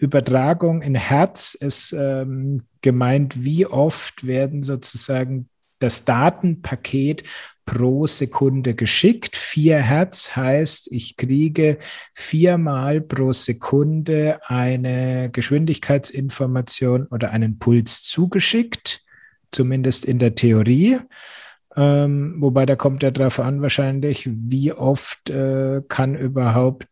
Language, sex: German, male